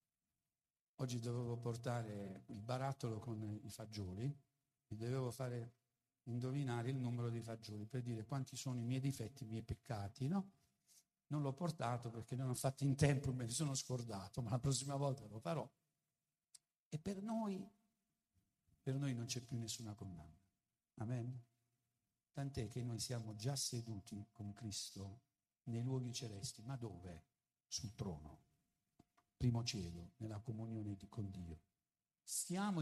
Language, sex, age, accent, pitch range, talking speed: Italian, male, 50-69, native, 110-140 Hz, 145 wpm